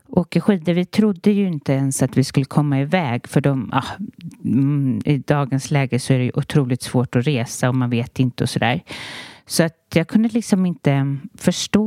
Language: Swedish